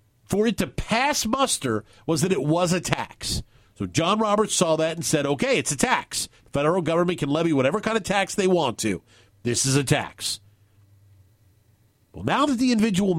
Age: 50-69